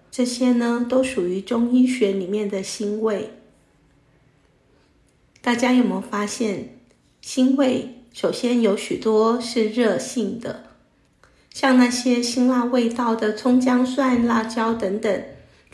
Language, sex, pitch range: Chinese, female, 210-250 Hz